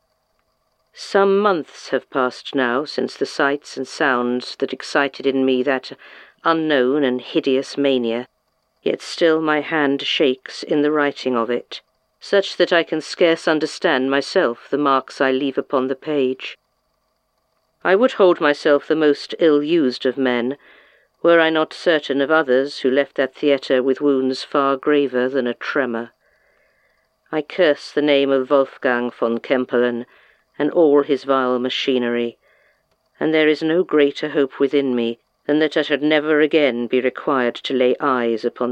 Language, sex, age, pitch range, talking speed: English, female, 50-69, 130-155 Hz, 160 wpm